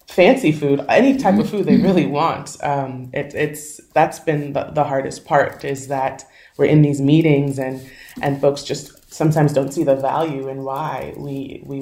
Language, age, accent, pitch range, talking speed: English, 20-39, American, 135-150 Hz, 190 wpm